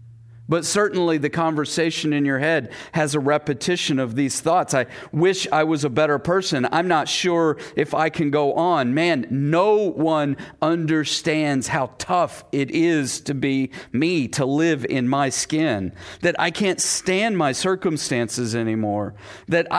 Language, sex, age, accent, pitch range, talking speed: English, male, 40-59, American, 140-185 Hz, 160 wpm